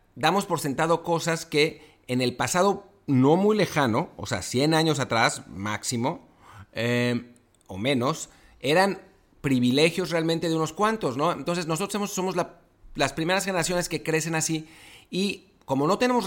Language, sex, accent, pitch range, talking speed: English, male, Mexican, 125-170 Hz, 150 wpm